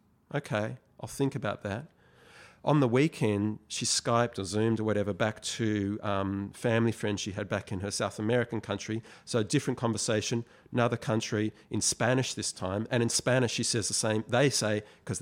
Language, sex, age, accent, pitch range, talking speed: English, male, 40-59, Australian, 105-120 Hz, 185 wpm